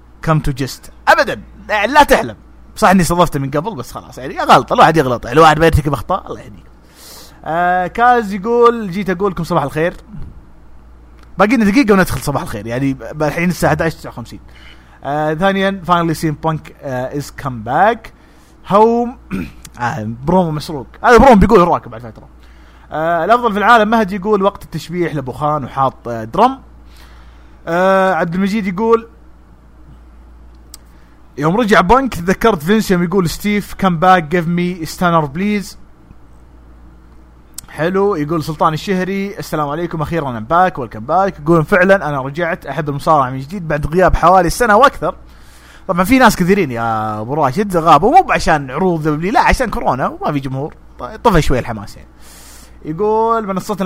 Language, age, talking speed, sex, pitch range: English, 30-49, 140 wpm, male, 115-190 Hz